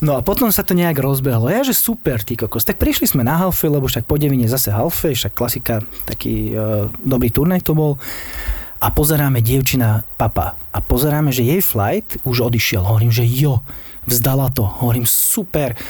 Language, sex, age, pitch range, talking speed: Slovak, male, 20-39, 120-155 Hz, 180 wpm